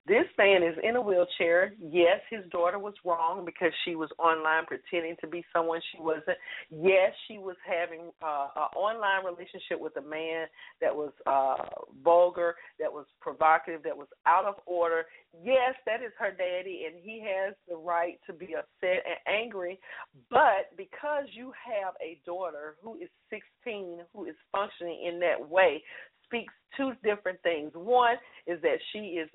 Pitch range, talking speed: 165-205 Hz, 170 wpm